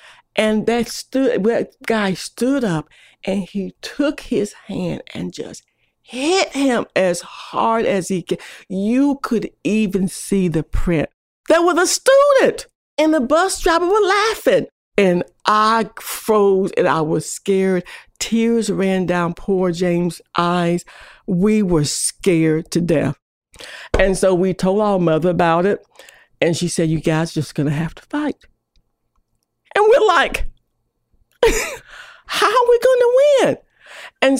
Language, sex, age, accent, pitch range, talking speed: English, female, 50-69, American, 180-285 Hz, 150 wpm